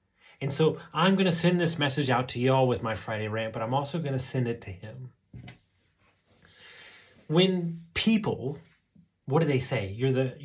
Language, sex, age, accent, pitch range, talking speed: English, male, 30-49, American, 110-145 Hz, 185 wpm